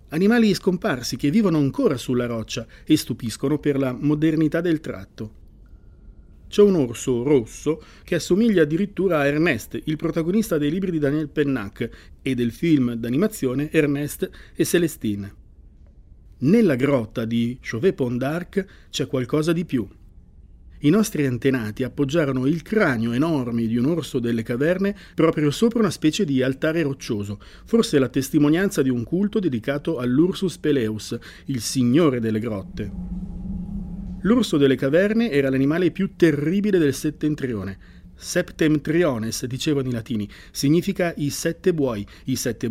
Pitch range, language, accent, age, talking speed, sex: 120-170 Hz, Italian, native, 50-69, 140 wpm, male